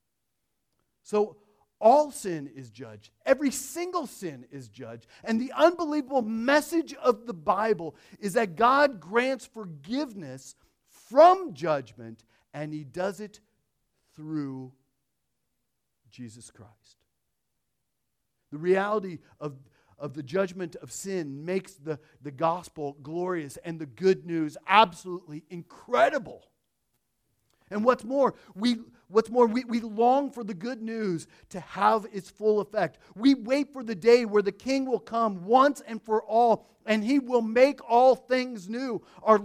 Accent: American